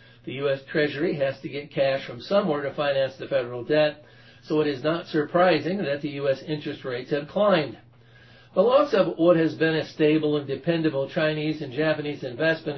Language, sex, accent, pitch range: English, male, American, 135-160 Hz